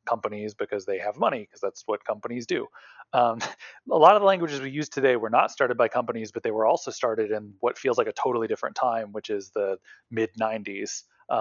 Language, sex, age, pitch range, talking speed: English, male, 30-49, 115-155 Hz, 215 wpm